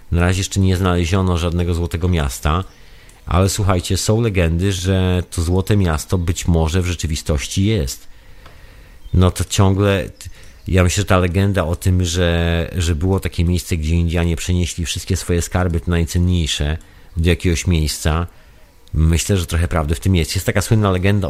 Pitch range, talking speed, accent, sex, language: 80-95 Hz, 165 wpm, native, male, Polish